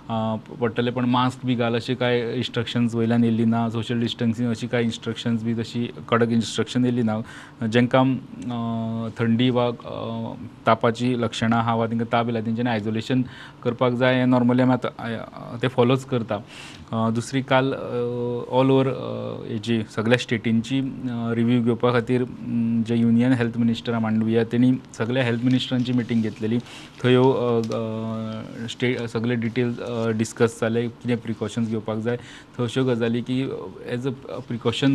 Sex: male